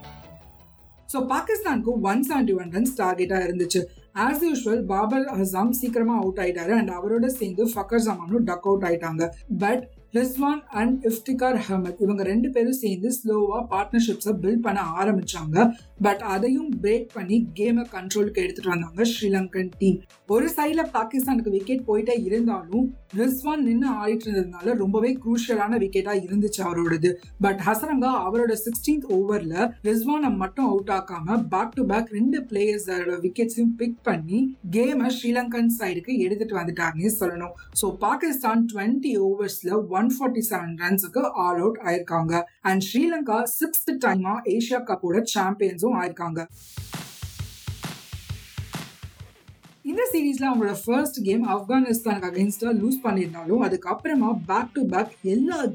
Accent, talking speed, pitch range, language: native, 95 wpm, 190-245 Hz, Tamil